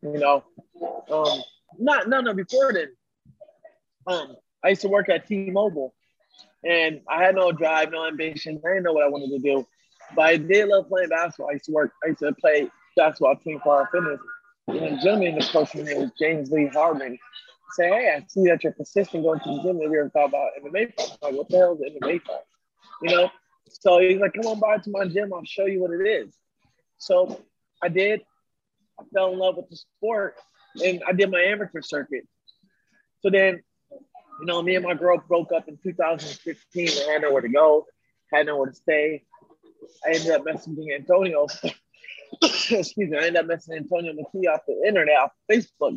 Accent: American